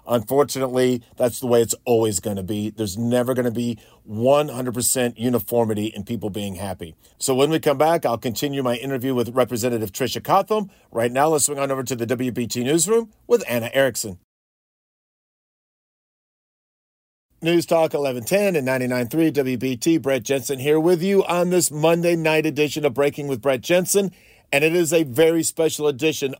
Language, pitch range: English, 125-160 Hz